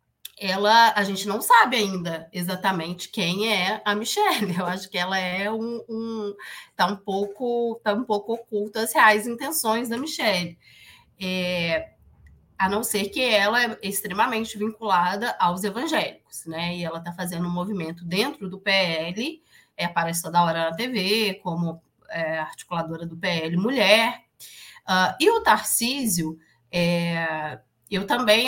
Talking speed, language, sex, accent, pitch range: 150 wpm, Portuguese, female, Brazilian, 170-220 Hz